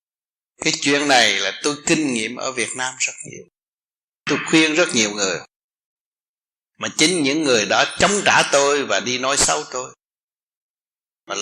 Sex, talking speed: male, 165 wpm